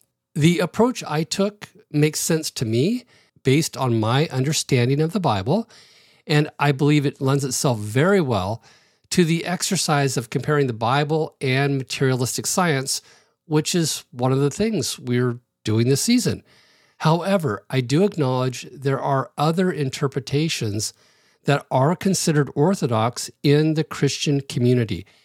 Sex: male